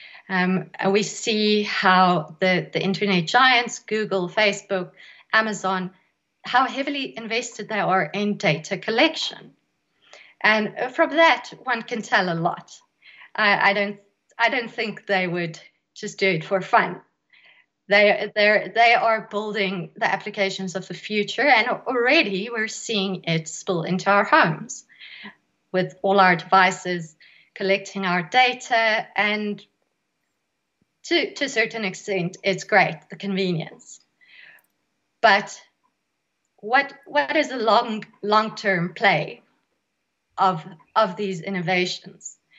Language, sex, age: English, female, 30-49